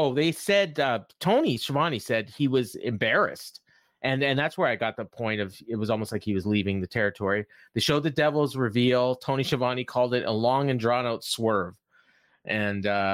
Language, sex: English, male